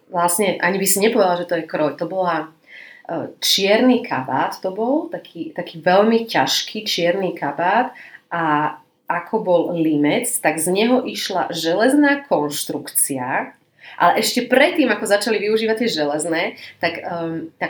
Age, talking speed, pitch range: 30-49, 140 wpm, 165-205 Hz